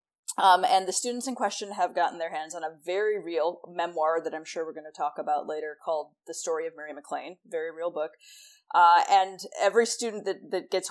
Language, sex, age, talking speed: English, female, 20-39, 220 wpm